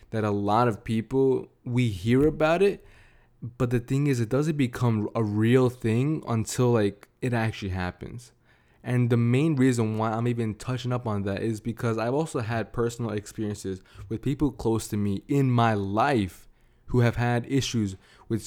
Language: English